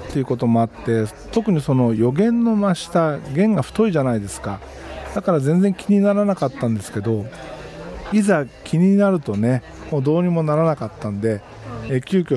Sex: male